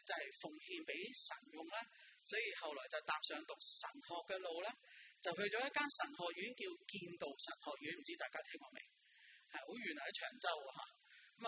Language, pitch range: Chinese, 195-320 Hz